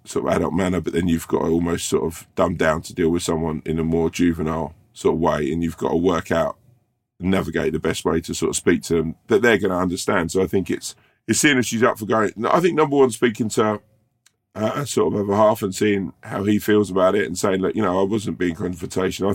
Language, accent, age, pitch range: English, British, 20-39, 90-115 Hz